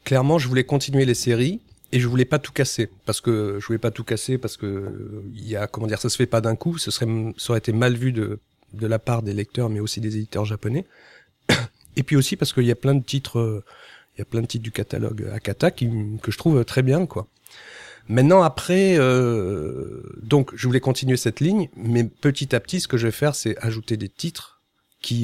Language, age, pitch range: French, 40-59, 110-130 Hz